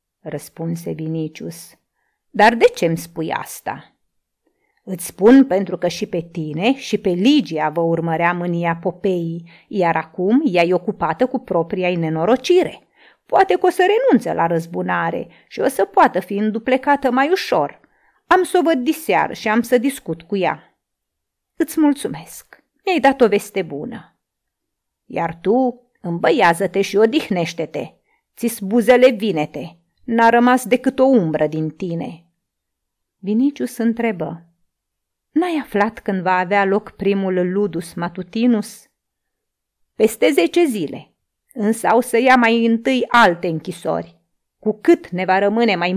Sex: female